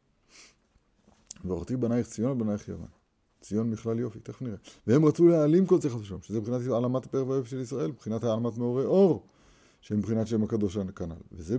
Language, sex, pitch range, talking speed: Hebrew, male, 105-140 Hz, 170 wpm